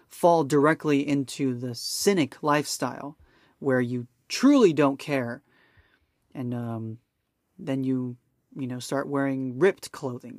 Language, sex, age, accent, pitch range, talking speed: English, male, 30-49, American, 130-160 Hz, 120 wpm